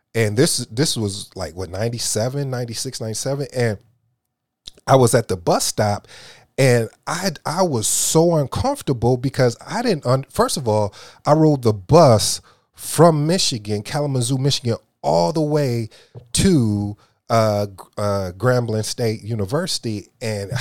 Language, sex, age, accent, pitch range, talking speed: English, male, 30-49, American, 105-135 Hz, 140 wpm